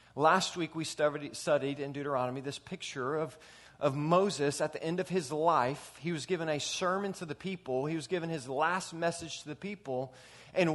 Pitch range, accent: 140-190 Hz, American